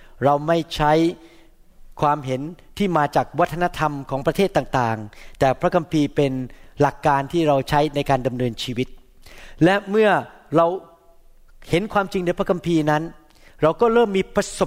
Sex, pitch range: male, 145-190 Hz